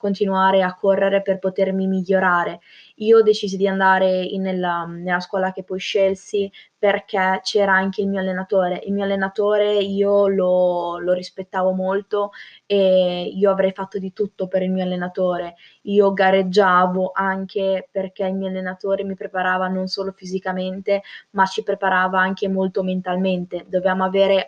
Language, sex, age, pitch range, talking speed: Italian, female, 20-39, 185-200 Hz, 150 wpm